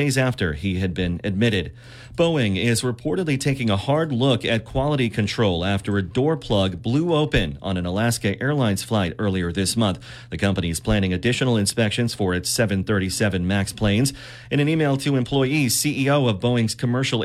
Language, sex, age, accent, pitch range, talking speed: English, male, 30-49, American, 100-130 Hz, 175 wpm